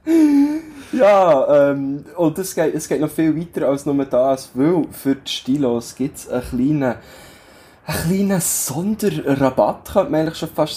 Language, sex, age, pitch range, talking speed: German, male, 20-39, 125-150 Hz, 155 wpm